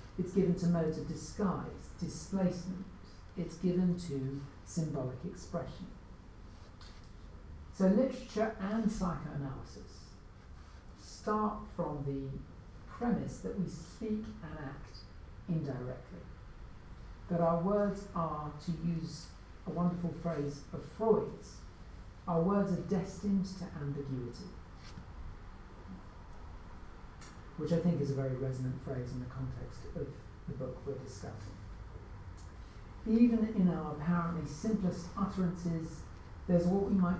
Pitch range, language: 110-175 Hz, English